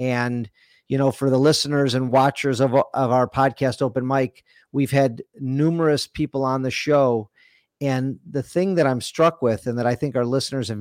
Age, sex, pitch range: 40-59, male, 125-155 Hz